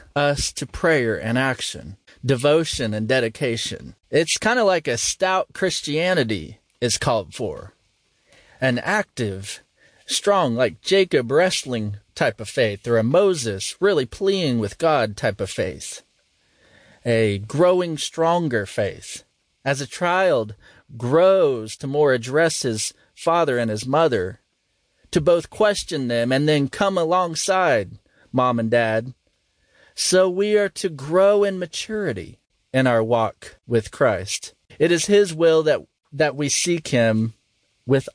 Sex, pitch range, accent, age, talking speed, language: male, 115-175 Hz, American, 30-49, 135 wpm, English